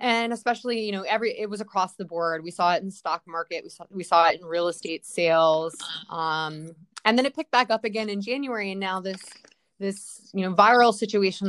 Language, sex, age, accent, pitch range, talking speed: English, female, 20-39, American, 175-205 Hz, 225 wpm